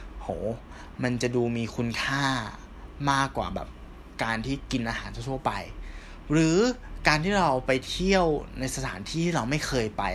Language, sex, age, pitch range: Thai, male, 20-39, 105-145 Hz